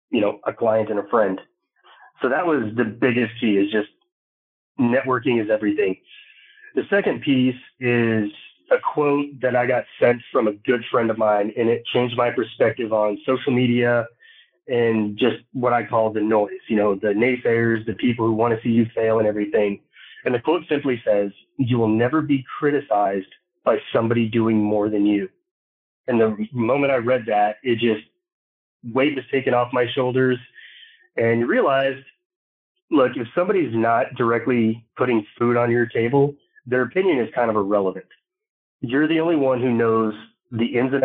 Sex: male